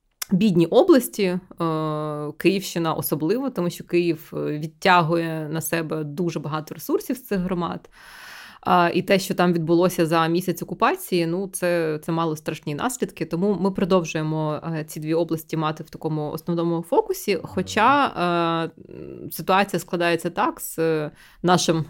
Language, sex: Ukrainian, female